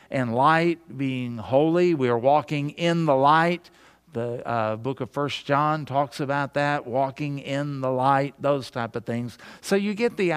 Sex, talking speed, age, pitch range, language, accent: male, 180 wpm, 50-69, 135-180 Hz, English, American